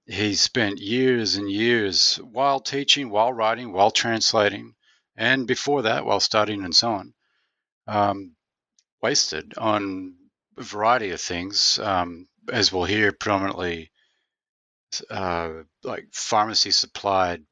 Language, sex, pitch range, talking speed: English, male, 95-135 Hz, 120 wpm